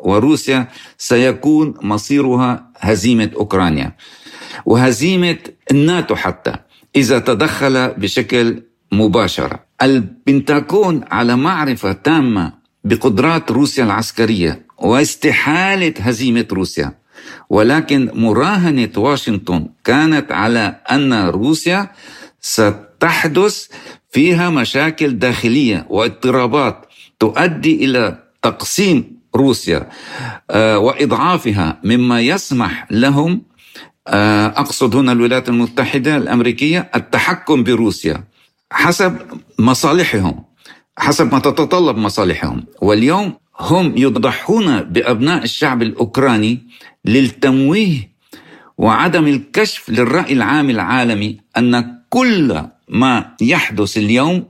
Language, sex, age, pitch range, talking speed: Arabic, male, 60-79, 110-150 Hz, 80 wpm